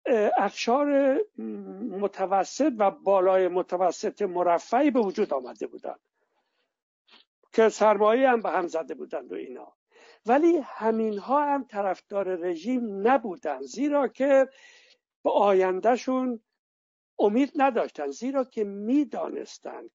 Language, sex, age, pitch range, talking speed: Persian, male, 60-79, 190-260 Hz, 100 wpm